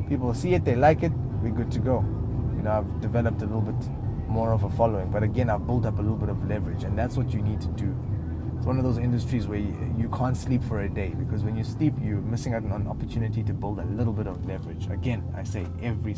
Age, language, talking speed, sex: 20-39, English, 265 wpm, male